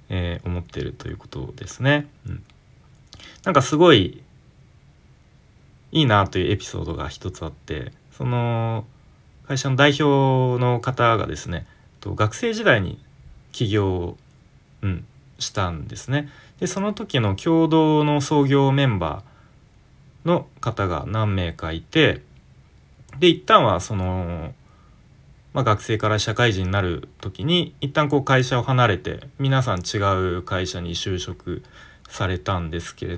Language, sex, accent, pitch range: Japanese, male, native, 100-145 Hz